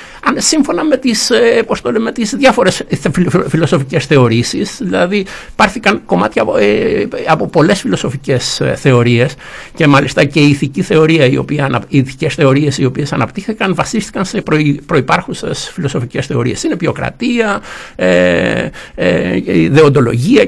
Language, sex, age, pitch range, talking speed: Greek, male, 60-79, 120-145 Hz, 110 wpm